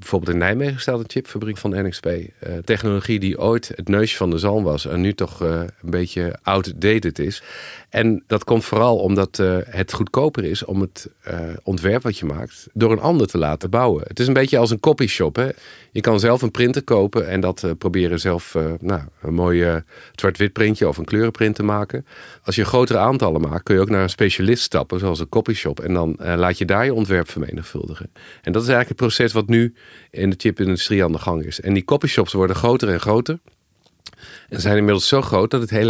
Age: 50-69